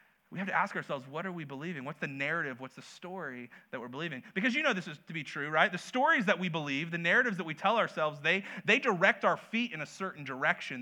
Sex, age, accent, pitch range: male, 30-49, American, 165-210 Hz